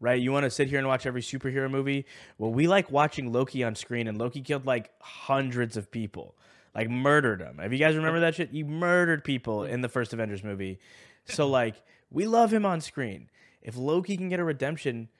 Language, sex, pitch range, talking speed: English, male, 115-145 Hz, 215 wpm